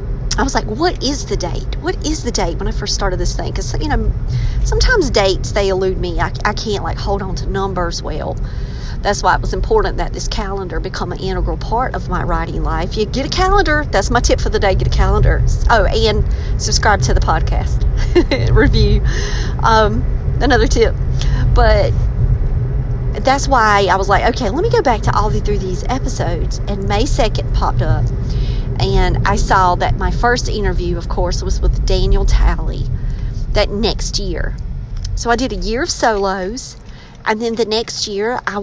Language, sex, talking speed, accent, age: English, female, 195 wpm, American, 40-59